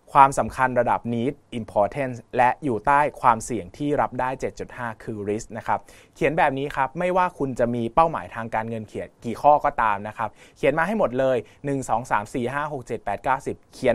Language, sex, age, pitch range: Thai, male, 20-39, 115-140 Hz